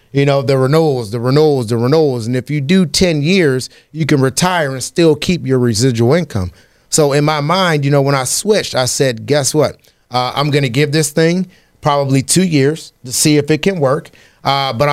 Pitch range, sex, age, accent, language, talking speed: 125-150 Hz, male, 30-49, American, English, 215 wpm